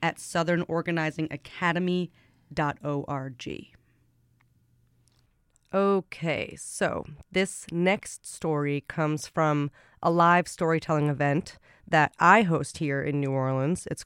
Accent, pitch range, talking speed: American, 145-170 Hz, 90 wpm